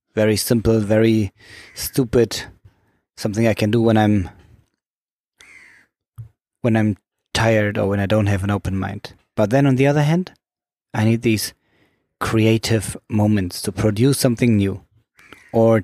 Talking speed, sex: 140 wpm, male